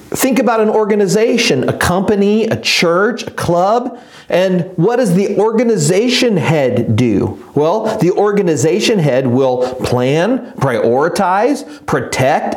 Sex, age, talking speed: male, 40-59, 120 wpm